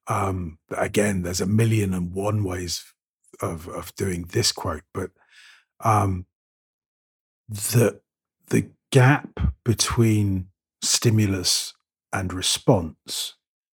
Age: 40-59